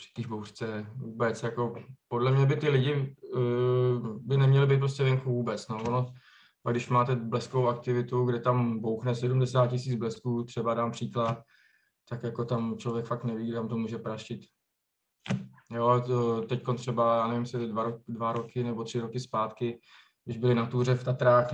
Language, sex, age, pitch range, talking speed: Czech, male, 20-39, 110-125 Hz, 165 wpm